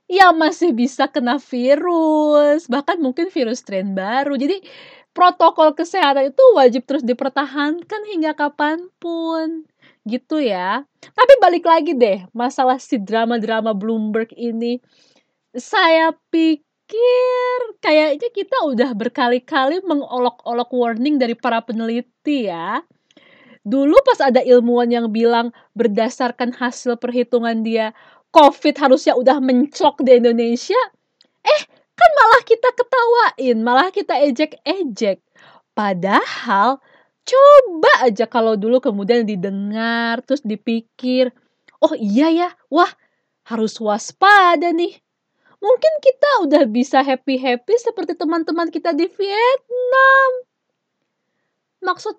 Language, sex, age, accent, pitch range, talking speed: Indonesian, female, 20-39, native, 245-335 Hz, 105 wpm